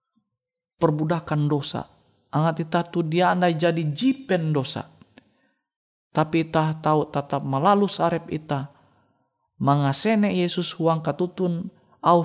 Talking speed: 110 wpm